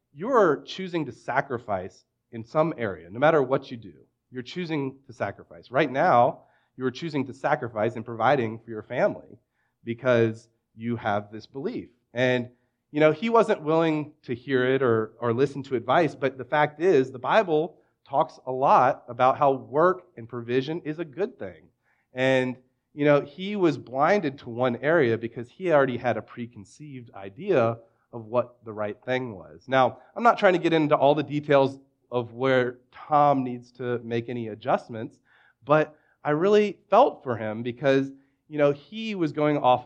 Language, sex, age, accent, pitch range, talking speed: English, male, 30-49, American, 120-150 Hz, 175 wpm